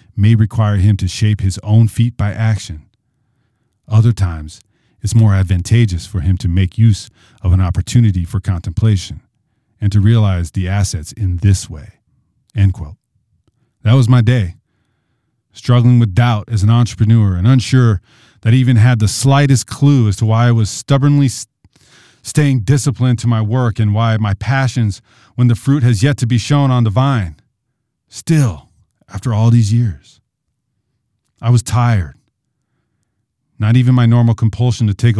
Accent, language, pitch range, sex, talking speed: American, English, 100-120 Hz, male, 165 wpm